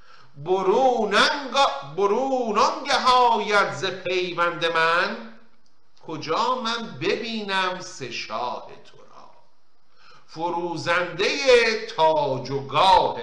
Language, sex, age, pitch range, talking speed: Persian, male, 50-69, 150-210 Hz, 70 wpm